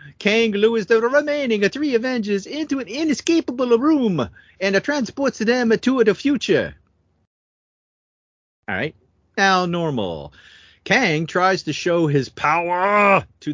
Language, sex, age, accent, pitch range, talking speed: English, male, 40-59, American, 135-220 Hz, 120 wpm